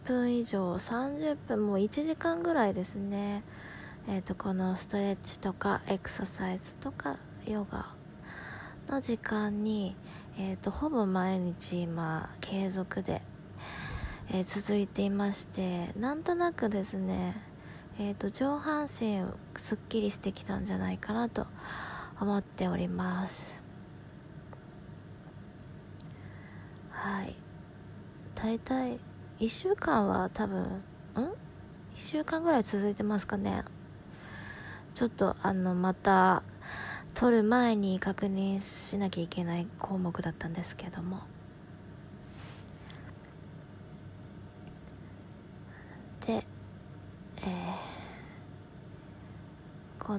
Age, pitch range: 20-39, 185-225 Hz